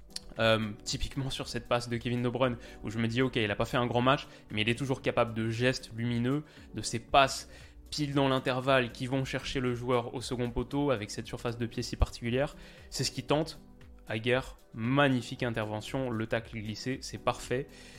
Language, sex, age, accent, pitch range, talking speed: French, male, 20-39, French, 115-140 Hz, 210 wpm